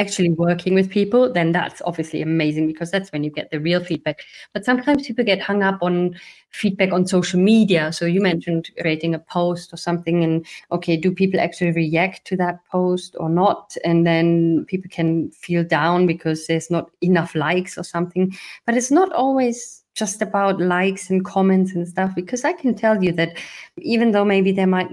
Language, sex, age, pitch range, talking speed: English, female, 30-49, 175-220 Hz, 195 wpm